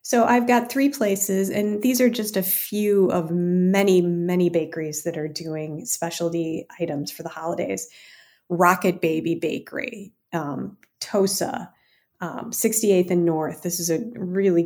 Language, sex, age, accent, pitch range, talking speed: English, female, 30-49, American, 170-215 Hz, 150 wpm